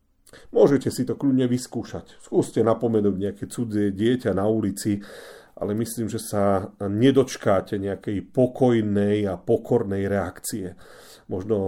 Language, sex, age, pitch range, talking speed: Slovak, male, 40-59, 100-125 Hz, 120 wpm